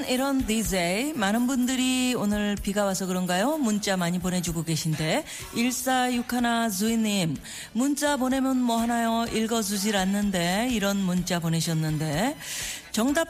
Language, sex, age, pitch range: Korean, female, 40-59, 195-270 Hz